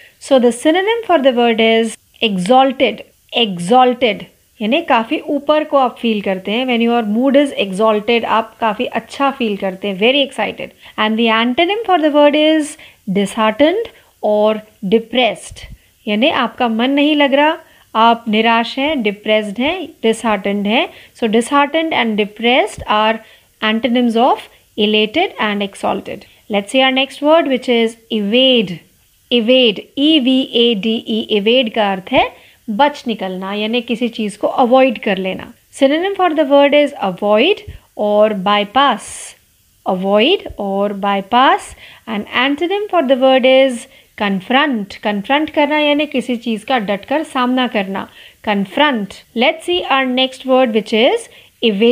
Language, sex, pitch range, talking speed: Marathi, female, 215-285 Hz, 140 wpm